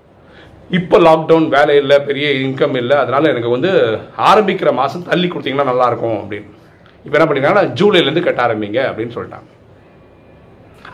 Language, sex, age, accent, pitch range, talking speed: Tamil, male, 40-59, native, 130-155 Hz, 135 wpm